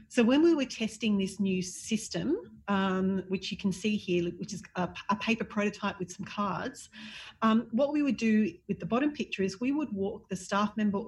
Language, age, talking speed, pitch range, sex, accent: English, 40-59, 210 wpm, 185-225 Hz, female, Australian